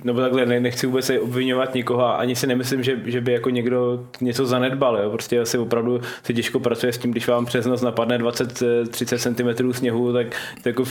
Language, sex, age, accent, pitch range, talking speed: Czech, male, 20-39, native, 115-125 Hz, 200 wpm